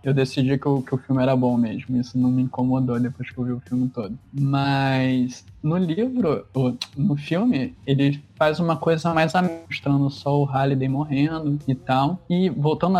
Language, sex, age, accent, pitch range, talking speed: Portuguese, male, 20-39, Brazilian, 130-160 Hz, 180 wpm